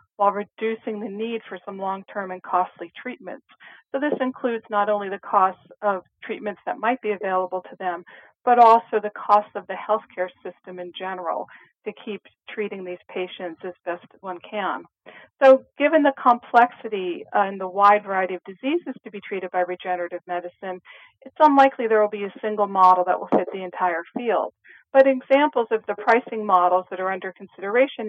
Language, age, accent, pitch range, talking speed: English, 40-59, American, 185-230 Hz, 180 wpm